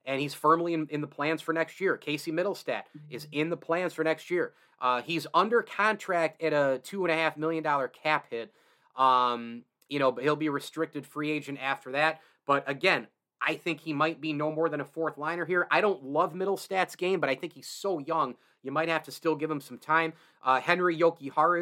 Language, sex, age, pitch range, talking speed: English, male, 30-49, 140-165 Hz, 230 wpm